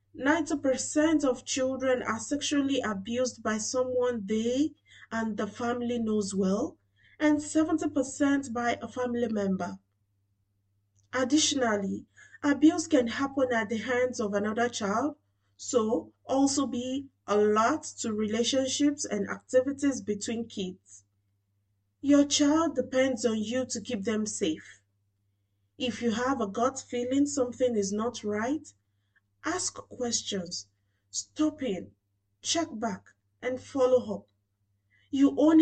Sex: female